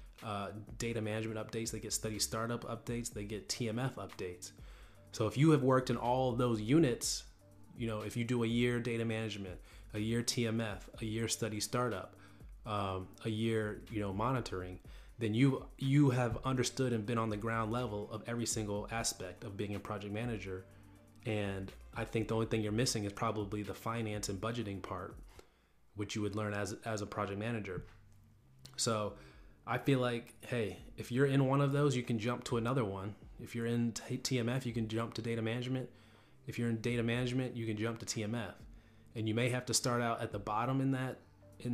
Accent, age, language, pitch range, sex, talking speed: American, 30-49, English, 105-120 Hz, male, 200 wpm